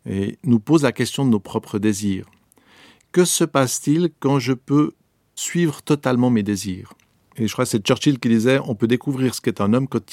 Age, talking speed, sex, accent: 50-69, 205 wpm, male, French